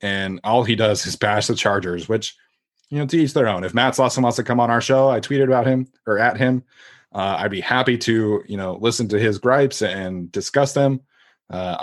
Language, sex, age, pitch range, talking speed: English, male, 20-39, 105-130 Hz, 235 wpm